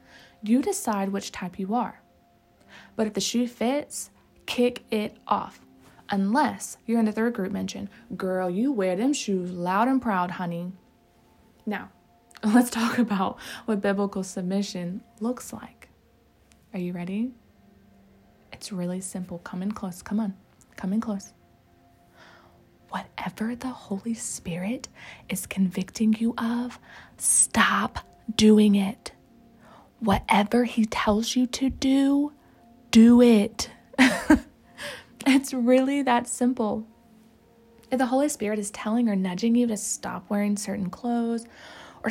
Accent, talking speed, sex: American, 130 wpm, female